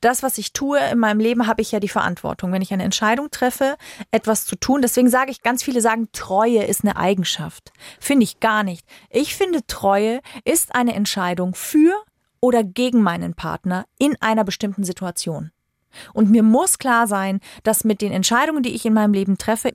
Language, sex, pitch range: German, female, 195-255 Hz